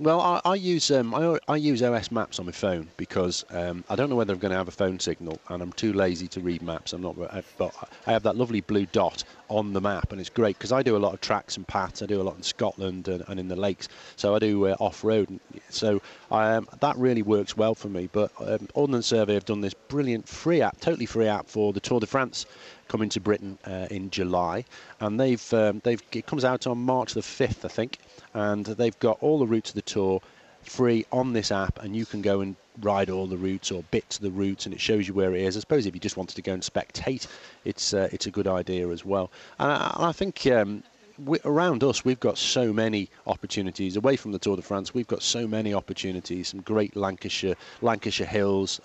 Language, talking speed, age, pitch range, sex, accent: English, 245 wpm, 40-59, 95-115 Hz, male, British